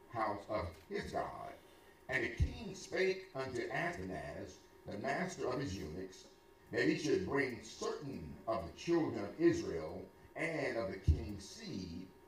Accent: American